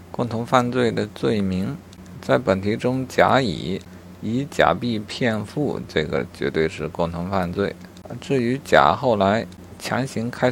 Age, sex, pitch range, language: 50-69, male, 90-105 Hz, Chinese